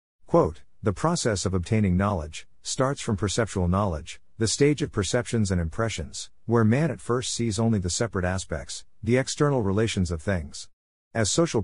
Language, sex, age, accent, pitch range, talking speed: English, male, 50-69, American, 90-115 Hz, 160 wpm